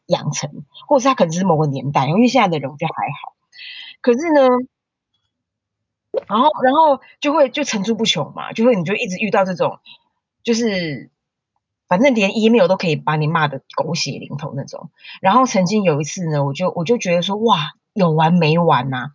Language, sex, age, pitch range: Chinese, female, 20-39, 160-230 Hz